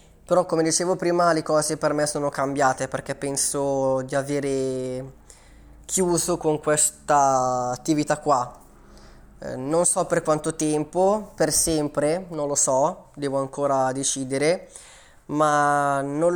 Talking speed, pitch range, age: 125 wpm, 135-160 Hz, 20-39